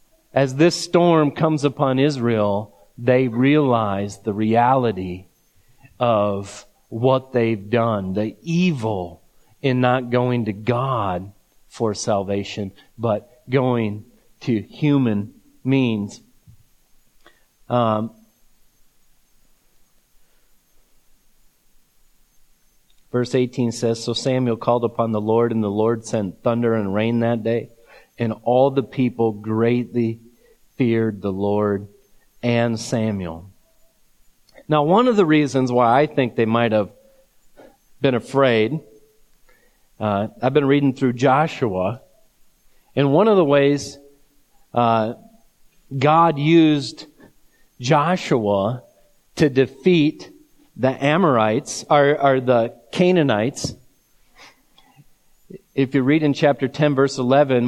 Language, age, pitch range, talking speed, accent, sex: English, 40-59, 110-140 Hz, 105 wpm, American, male